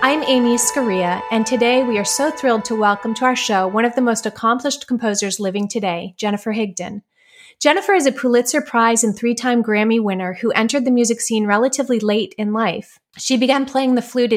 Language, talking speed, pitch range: English, 195 wpm, 210-255 Hz